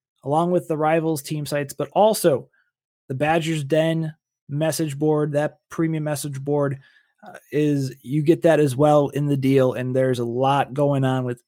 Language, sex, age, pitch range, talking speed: English, male, 20-39, 130-160 Hz, 180 wpm